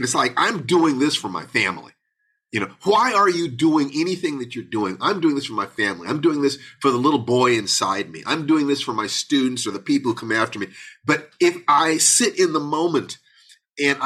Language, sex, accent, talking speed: English, male, American, 235 wpm